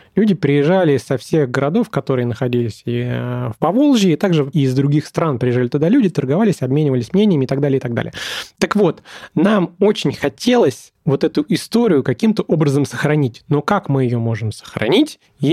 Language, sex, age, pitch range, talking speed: Russian, male, 20-39, 140-175 Hz, 175 wpm